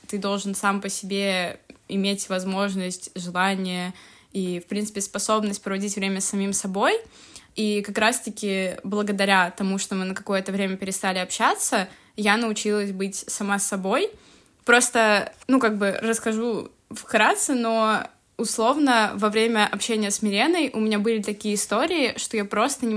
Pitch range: 195-225 Hz